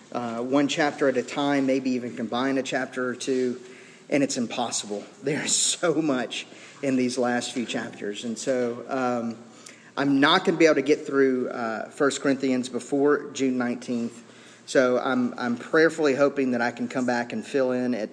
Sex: male